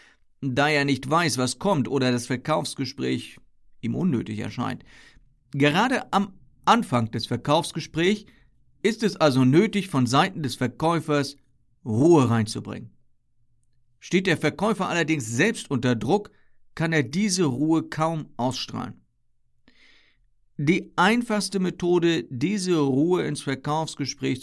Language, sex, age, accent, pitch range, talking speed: German, male, 50-69, German, 125-165 Hz, 115 wpm